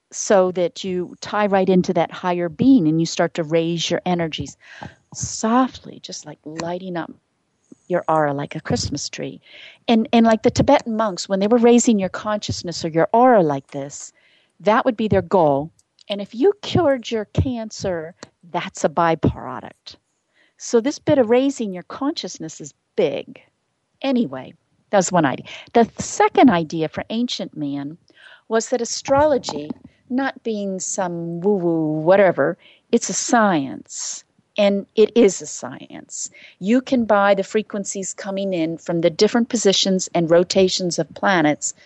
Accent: American